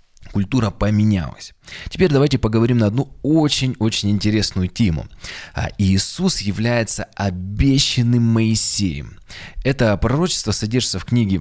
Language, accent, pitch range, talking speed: Russian, native, 95-120 Hz, 100 wpm